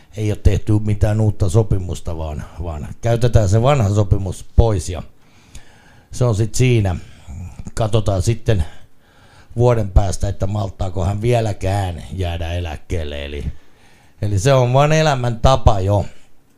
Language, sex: Finnish, male